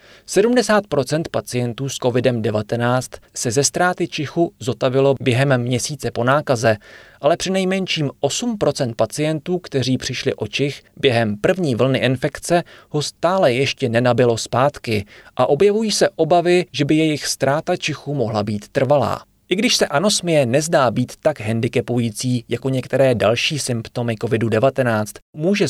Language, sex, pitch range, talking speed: Czech, male, 120-155 Hz, 135 wpm